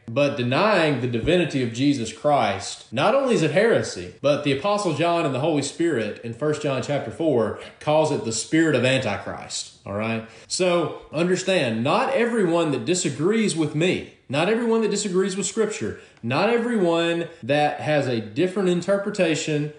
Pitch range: 130-195 Hz